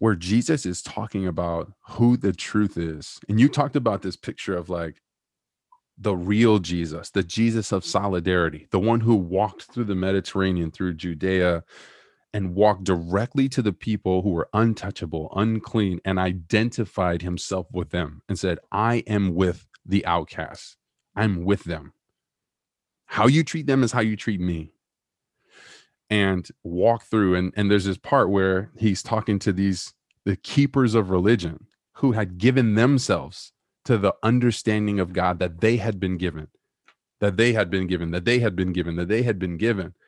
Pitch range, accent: 90-110 Hz, American